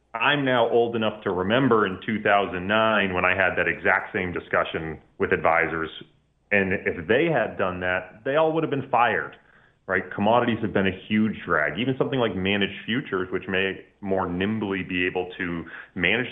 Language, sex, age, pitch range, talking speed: English, male, 30-49, 95-130 Hz, 180 wpm